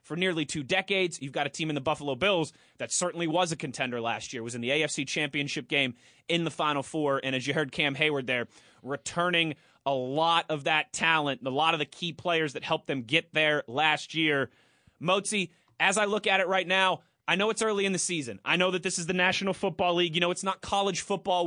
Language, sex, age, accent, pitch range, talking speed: English, male, 20-39, American, 150-195 Hz, 245 wpm